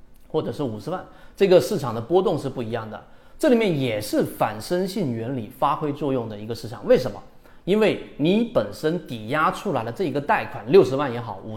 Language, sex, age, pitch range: Chinese, male, 30-49, 120-165 Hz